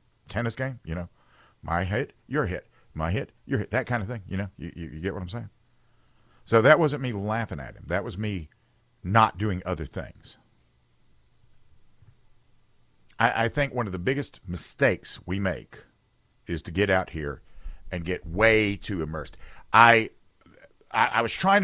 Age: 50-69